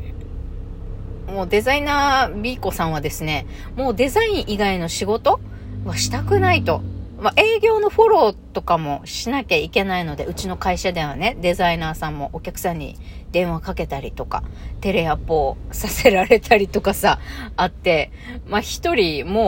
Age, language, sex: 40-59, Japanese, female